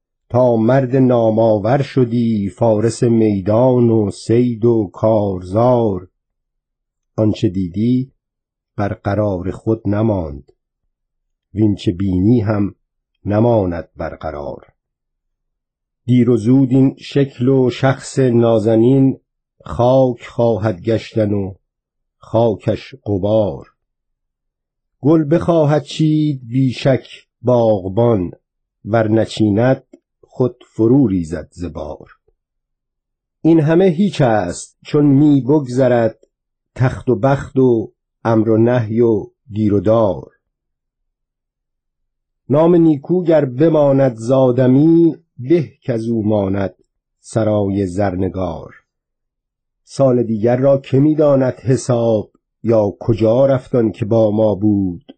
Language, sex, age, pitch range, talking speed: Persian, male, 50-69, 105-135 Hz, 90 wpm